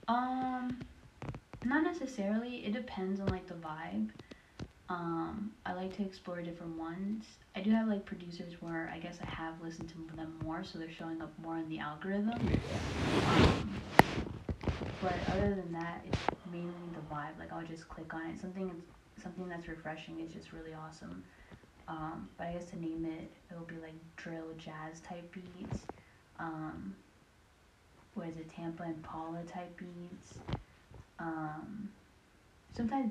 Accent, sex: American, female